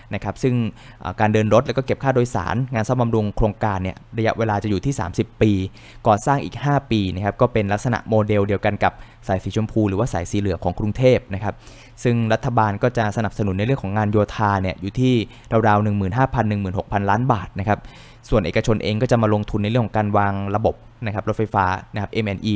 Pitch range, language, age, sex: 100-120 Hz, Thai, 20-39, male